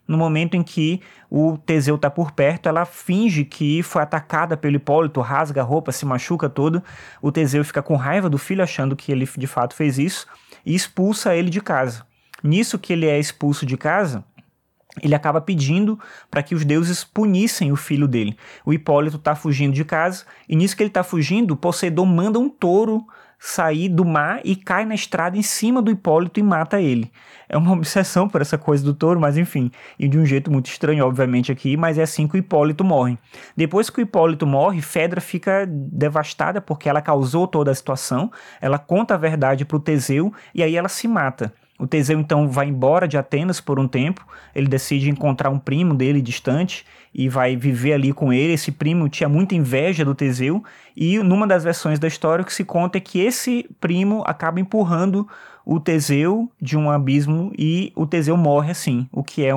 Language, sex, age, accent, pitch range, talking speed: Portuguese, male, 20-39, Brazilian, 140-175 Hz, 200 wpm